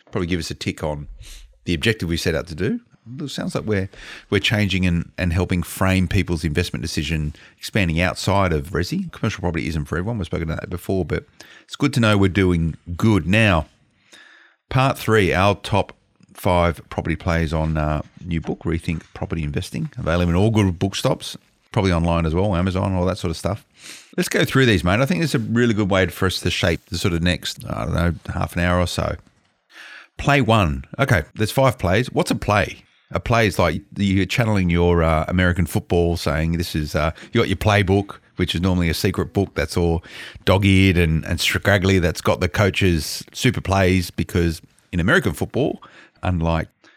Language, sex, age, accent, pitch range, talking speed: English, male, 30-49, Australian, 85-100 Hz, 200 wpm